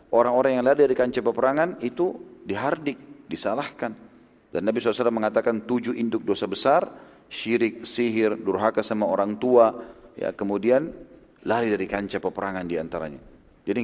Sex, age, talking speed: male, 40-59, 135 wpm